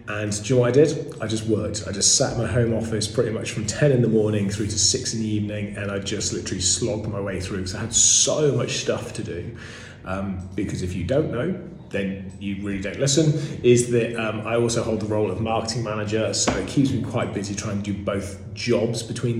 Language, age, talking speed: English, 30-49, 250 wpm